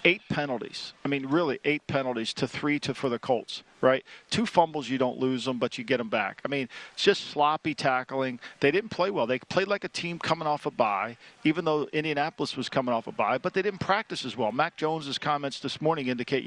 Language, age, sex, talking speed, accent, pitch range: English, 50-69, male, 235 wpm, American, 140-165 Hz